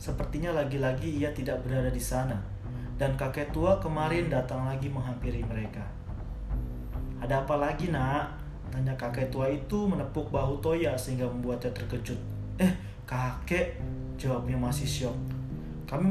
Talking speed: 130 wpm